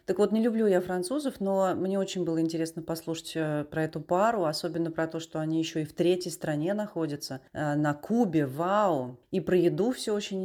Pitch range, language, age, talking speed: 150-175 Hz, Russian, 30-49, 195 wpm